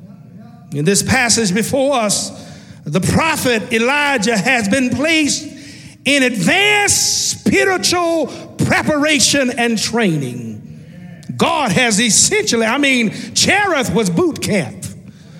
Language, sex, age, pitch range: English, male, 50-69, 200-300 Hz